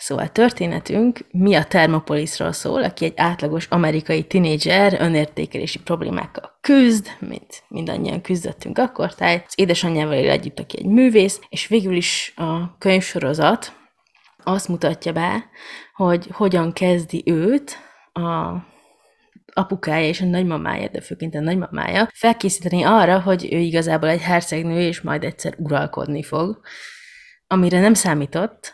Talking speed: 125 wpm